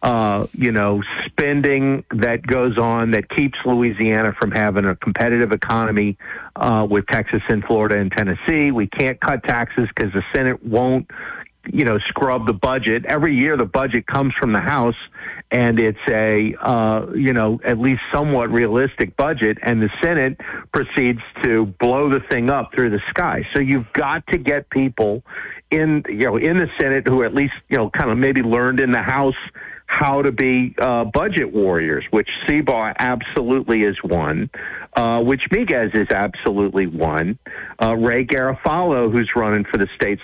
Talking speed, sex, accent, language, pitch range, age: 170 wpm, male, American, English, 110-130 Hz, 50-69